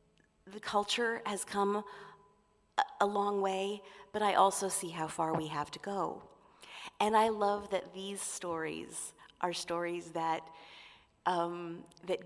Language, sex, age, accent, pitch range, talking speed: Italian, female, 40-59, American, 165-200 Hz, 130 wpm